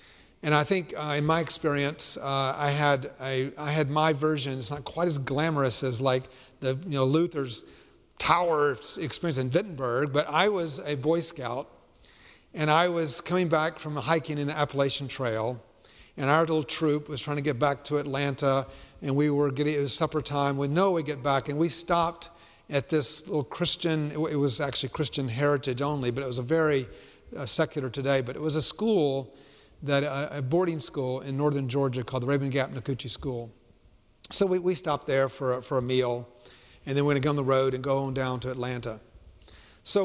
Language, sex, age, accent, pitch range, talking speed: English, male, 50-69, American, 130-160 Hz, 200 wpm